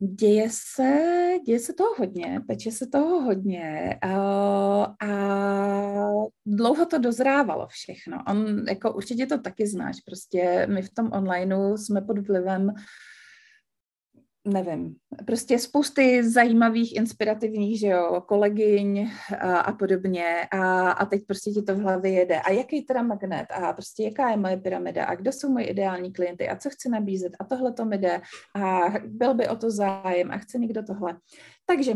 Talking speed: 165 wpm